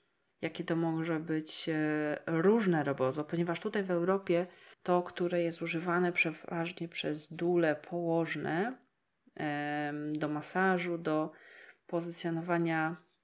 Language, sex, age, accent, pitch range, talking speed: English, female, 20-39, Polish, 155-180 Hz, 100 wpm